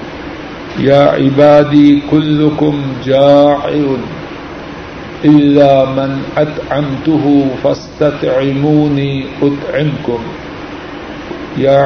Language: Urdu